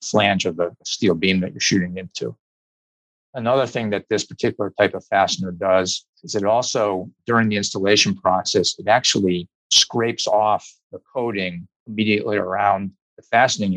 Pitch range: 95-105 Hz